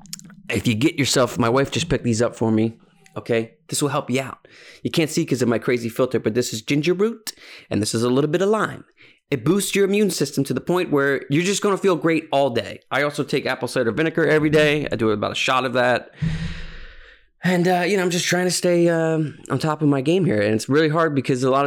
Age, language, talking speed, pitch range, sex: 20-39, English, 260 wpm, 115-150 Hz, male